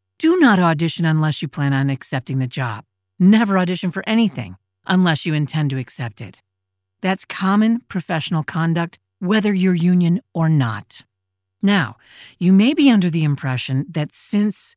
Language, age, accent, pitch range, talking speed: English, 40-59, American, 145-200 Hz, 155 wpm